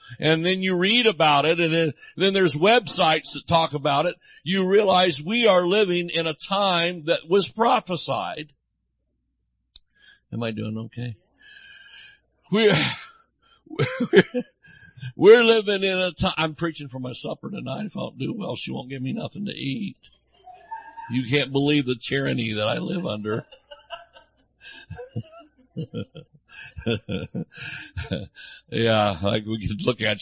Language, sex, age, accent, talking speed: English, male, 60-79, American, 135 wpm